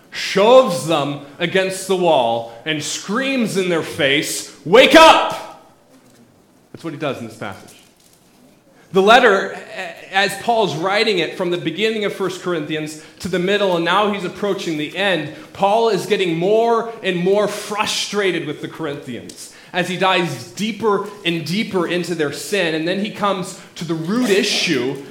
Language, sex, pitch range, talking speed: English, male, 165-210 Hz, 160 wpm